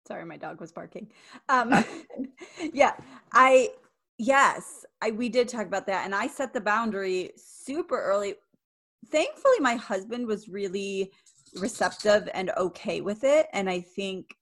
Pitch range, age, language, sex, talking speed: 185-235 Hz, 30-49, English, female, 145 wpm